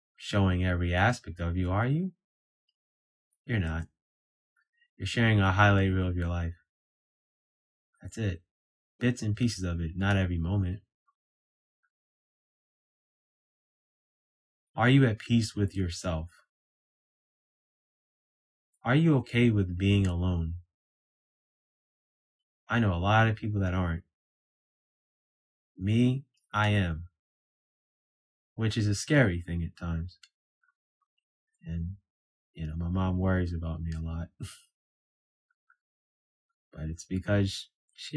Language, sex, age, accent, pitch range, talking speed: English, male, 20-39, American, 85-105 Hz, 110 wpm